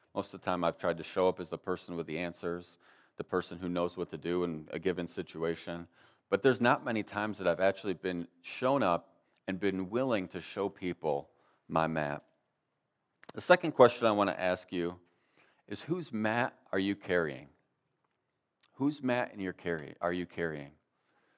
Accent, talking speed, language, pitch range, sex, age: American, 180 wpm, English, 90-110 Hz, male, 40-59